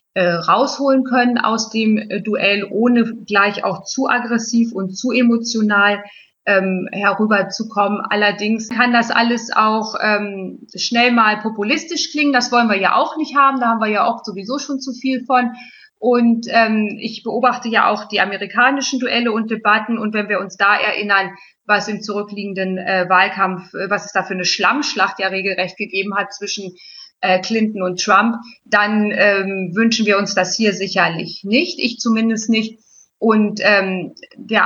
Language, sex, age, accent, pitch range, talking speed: German, female, 20-39, German, 190-230 Hz, 165 wpm